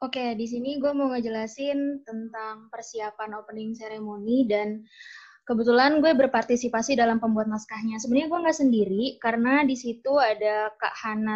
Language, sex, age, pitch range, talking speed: Indonesian, female, 20-39, 220-265 Hz, 150 wpm